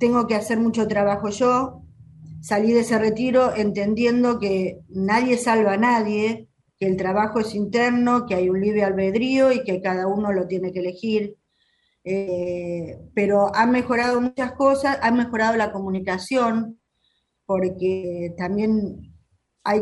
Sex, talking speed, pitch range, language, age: female, 140 wpm, 185-230 Hz, Spanish, 20-39